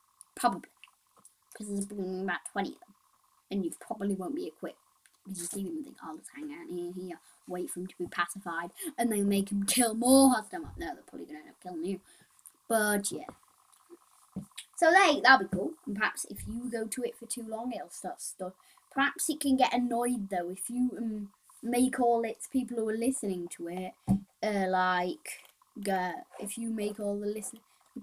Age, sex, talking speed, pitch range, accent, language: 20-39, female, 205 wpm, 195-280 Hz, British, English